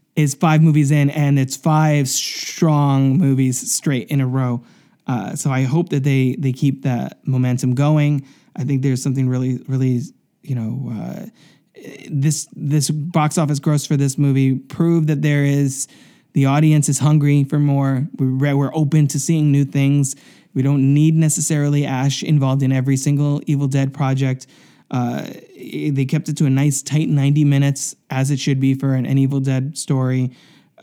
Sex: male